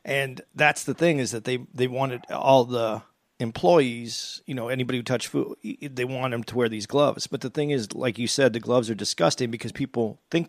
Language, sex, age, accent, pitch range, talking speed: English, male, 40-59, American, 115-135 Hz, 225 wpm